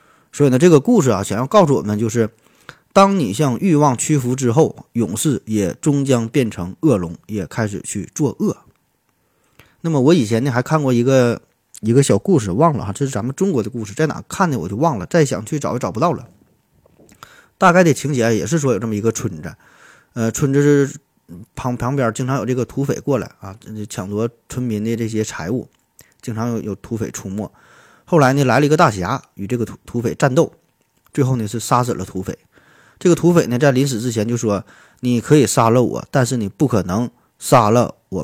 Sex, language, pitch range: male, Chinese, 105-140 Hz